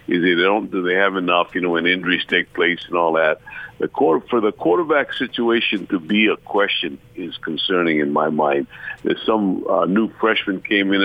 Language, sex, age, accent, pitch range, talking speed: English, male, 60-79, American, 90-110 Hz, 210 wpm